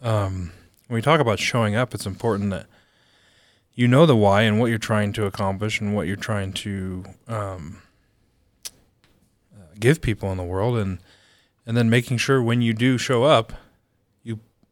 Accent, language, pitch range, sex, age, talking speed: American, English, 100-115 Hz, male, 30-49, 170 wpm